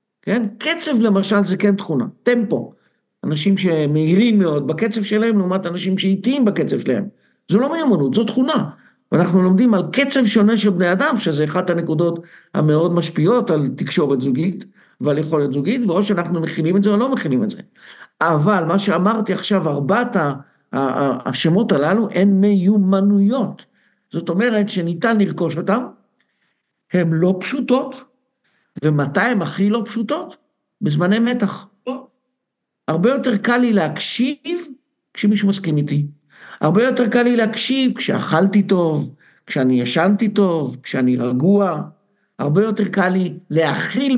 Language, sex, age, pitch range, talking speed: Hebrew, male, 60-79, 165-225 Hz, 135 wpm